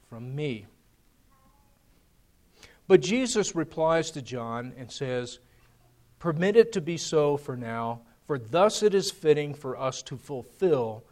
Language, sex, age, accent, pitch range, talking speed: English, male, 50-69, American, 135-175 Hz, 135 wpm